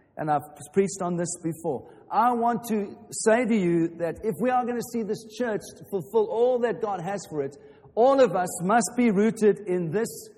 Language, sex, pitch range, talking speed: English, male, 170-220 Hz, 215 wpm